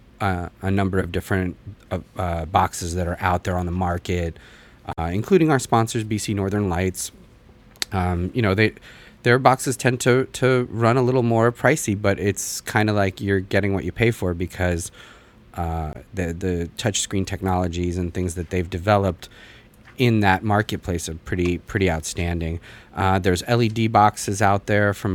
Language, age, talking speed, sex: English, 30-49, 170 wpm, male